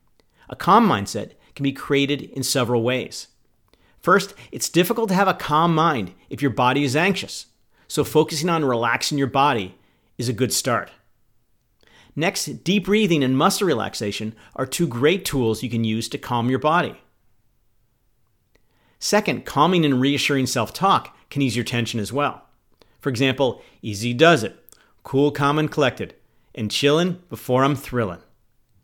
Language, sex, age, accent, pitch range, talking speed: English, male, 50-69, American, 120-155 Hz, 155 wpm